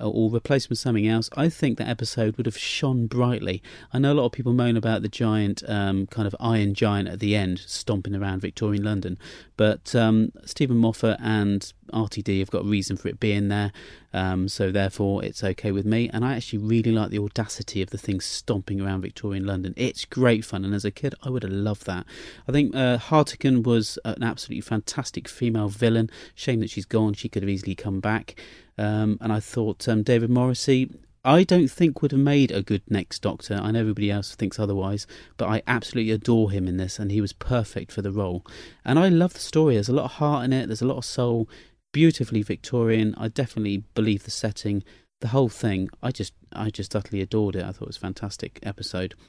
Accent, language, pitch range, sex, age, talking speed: British, English, 100-120 Hz, male, 30-49, 220 wpm